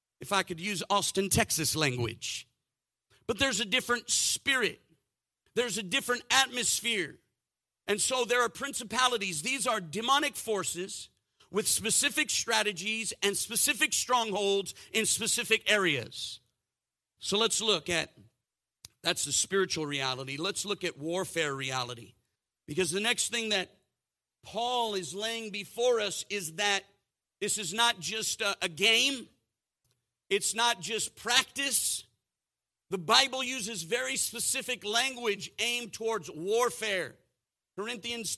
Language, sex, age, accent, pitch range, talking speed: English, male, 50-69, American, 200-250 Hz, 125 wpm